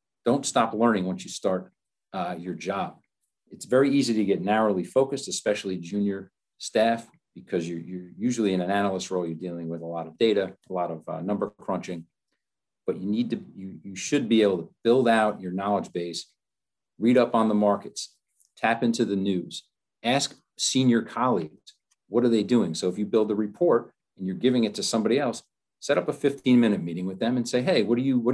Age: 40-59